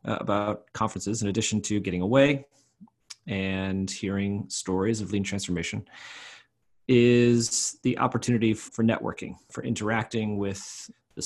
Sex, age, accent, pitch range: male, 30-49, American, 100-120 Hz